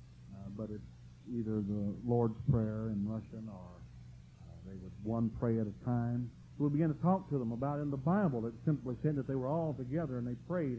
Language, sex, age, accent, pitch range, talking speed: English, male, 50-69, American, 105-135 Hz, 230 wpm